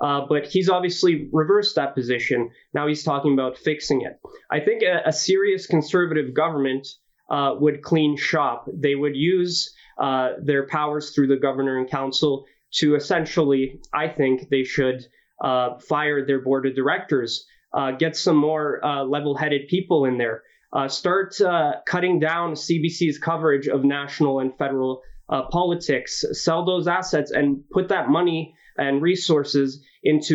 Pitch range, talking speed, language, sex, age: 140-170 Hz, 155 wpm, English, male, 20-39